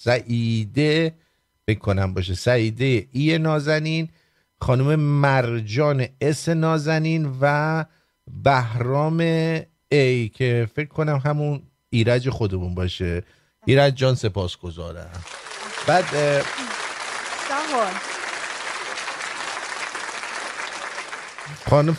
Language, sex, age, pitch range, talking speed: English, male, 50-69, 115-155 Hz, 70 wpm